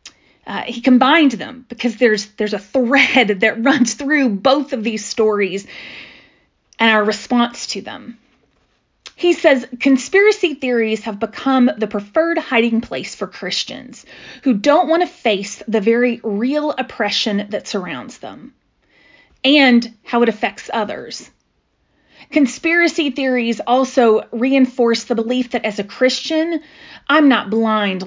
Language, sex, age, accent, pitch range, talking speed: English, female, 30-49, American, 220-275 Hz, 135 wpm